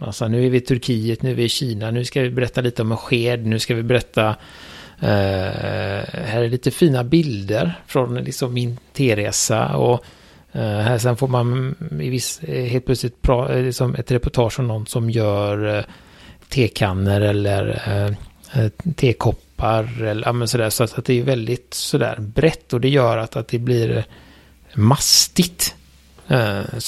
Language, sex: Swedish, male